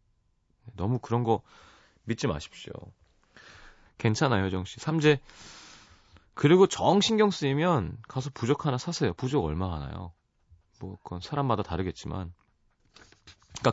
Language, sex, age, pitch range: Korean, male, 30-49, 90-140 Hz